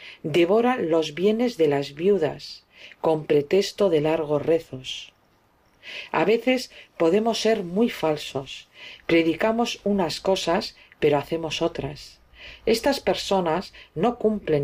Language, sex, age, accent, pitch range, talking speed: Spanish, female, 50-69, Spanish, 140-200 Hz, 110 wpm